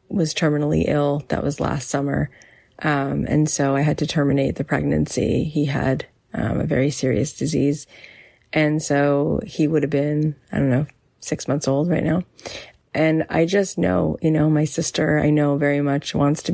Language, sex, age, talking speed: English, female, 30-49, 185 wpm